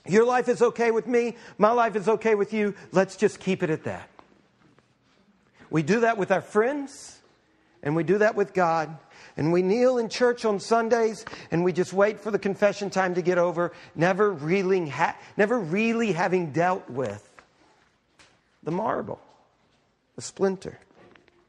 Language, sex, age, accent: English, male, 50-69, American